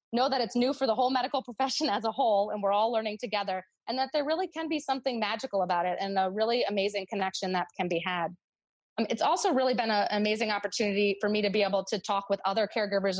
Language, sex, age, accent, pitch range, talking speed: English, female, 20-39, American, 190-225 Hz, 245 wpm